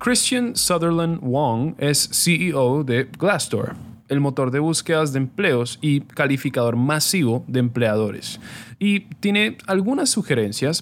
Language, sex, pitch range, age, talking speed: Spanish, male, 125-160 Hz, 20-39, 120 wpm